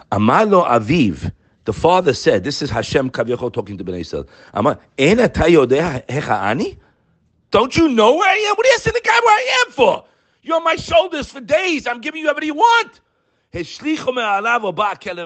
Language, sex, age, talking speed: English, male, 50-69, 150 wpm